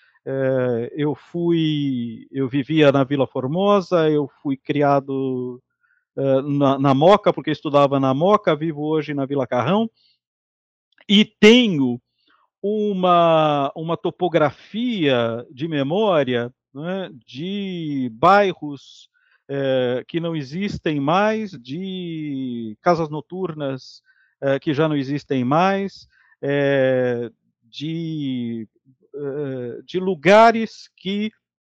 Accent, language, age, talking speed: Brazilian, Portuguese, 50-69, 90 wpm